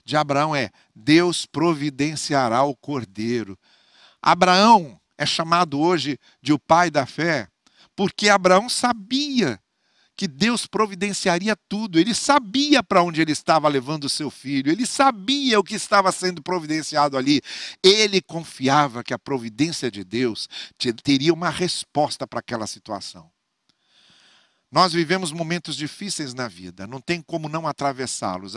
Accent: Brazilian